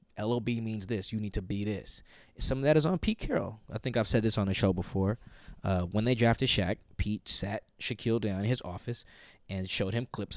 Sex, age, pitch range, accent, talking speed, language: male, 20-39, 100-125 Hz, American, 230 wpm, English